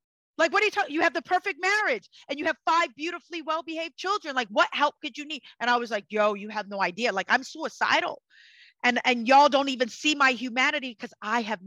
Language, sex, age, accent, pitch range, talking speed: English, female, 30-49, American, 215-285 Hz, 235 wpm